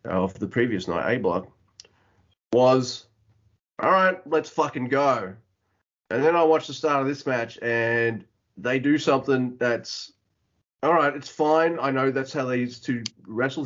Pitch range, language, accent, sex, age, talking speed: 110-155 Hz, English, Australian, male, 30-49, 155 wpm